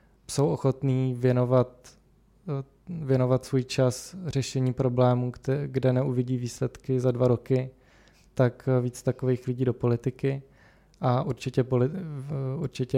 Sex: male